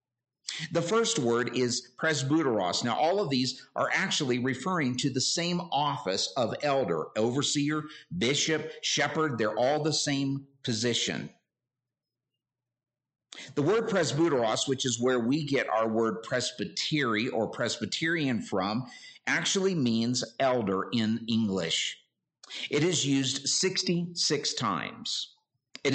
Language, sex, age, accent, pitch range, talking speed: English, male, 50-69, American, 120-145 Hz, 120 wpm